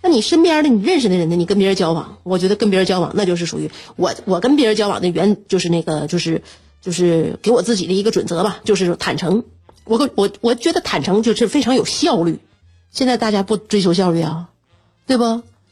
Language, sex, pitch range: Chinese, female, 190-295 Hz